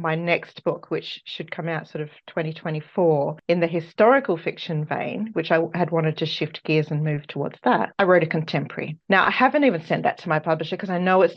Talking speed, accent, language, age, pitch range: 225 wpm, Australian, English, 30-49, 160-200 Hz